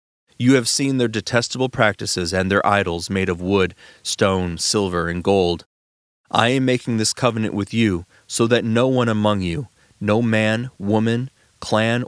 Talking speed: 165 wpm